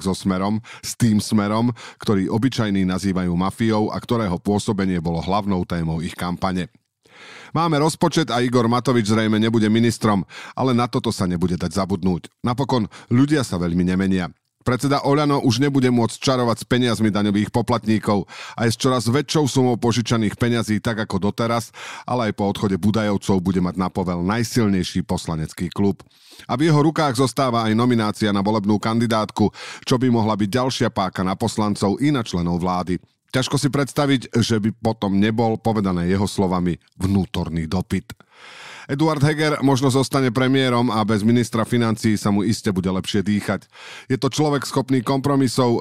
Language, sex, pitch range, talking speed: Slovak, male, 95-125 Hz, 160 wpm